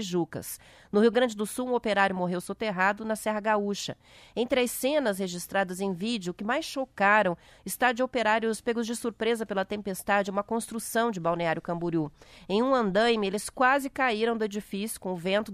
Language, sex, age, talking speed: Portuguese, female, 30-49, 180 wpm